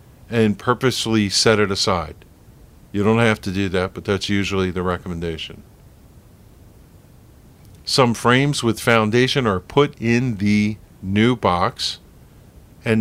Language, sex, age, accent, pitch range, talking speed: English, male, 50-69, American, 95-120 Hz, 125 wpm